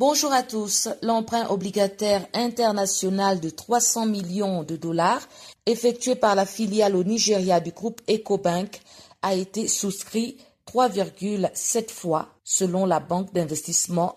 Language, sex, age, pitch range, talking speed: French, female, 50-69, 180-220 Hz, 125 wpm